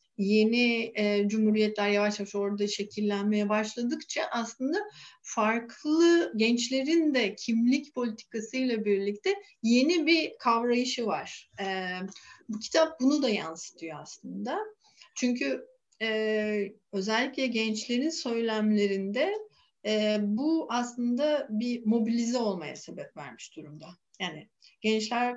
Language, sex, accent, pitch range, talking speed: Turkish, female, native, 205-240 Hz, 90 wpm